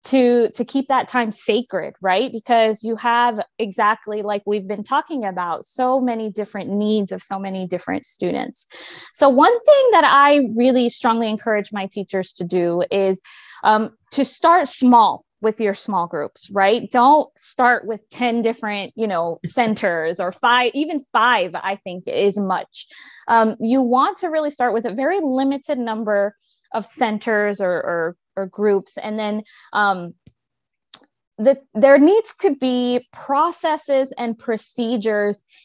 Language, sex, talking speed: English, female, 155 wpm